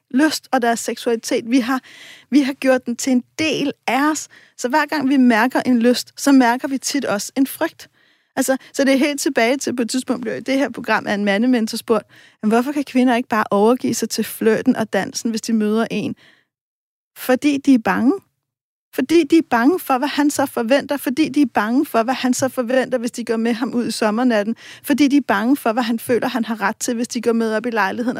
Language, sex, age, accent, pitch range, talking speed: Danish, female, 40-59, native, 235-275 Hz, 235 wpm